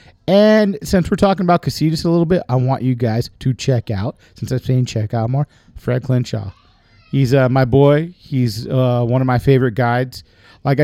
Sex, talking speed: male, 200 wpm